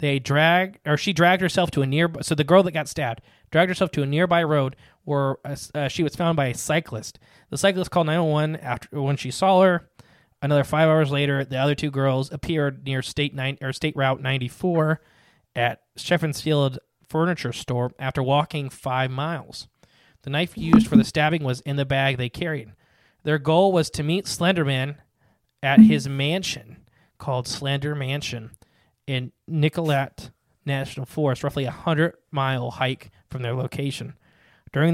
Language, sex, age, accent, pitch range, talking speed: English, male, 20-39, American, 130-160 Hz, 170 wpm